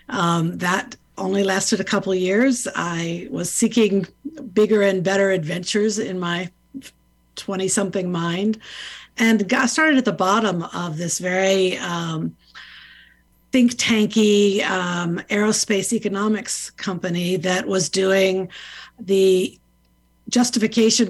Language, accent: English, American